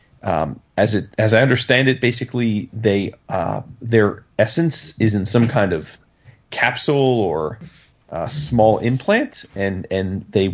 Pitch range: 105-130 Hz